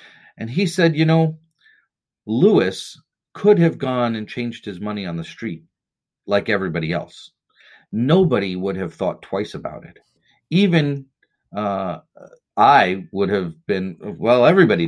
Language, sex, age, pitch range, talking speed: English, male, 40-59, 95-150 Hz, 135 wpm